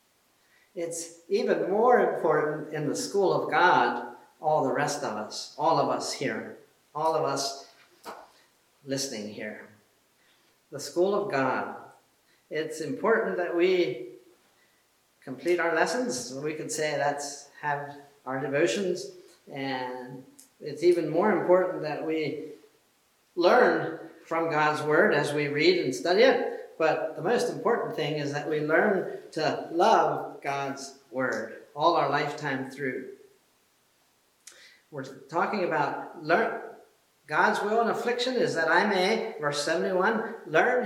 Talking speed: 130 wpm